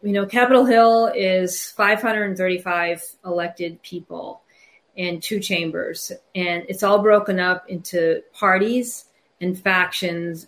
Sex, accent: female, American